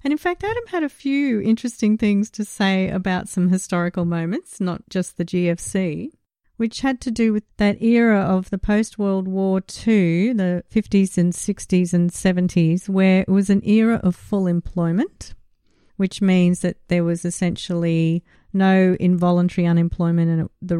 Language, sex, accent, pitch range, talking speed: English, female, Australian, 180-225 Hz, 160 wpm